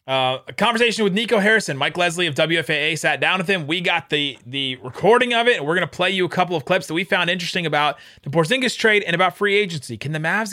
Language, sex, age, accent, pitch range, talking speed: English, male, 30-49, American, 140-185 Hz, 260 wpm